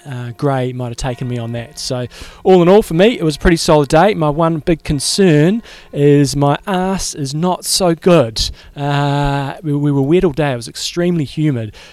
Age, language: 20-39, English